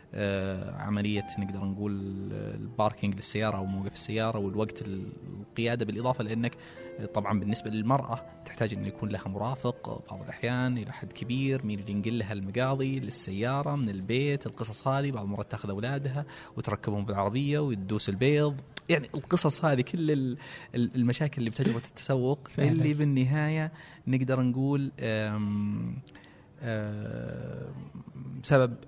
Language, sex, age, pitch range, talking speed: Arabic, male, 20-39, 105-140 Hz, 120 wpm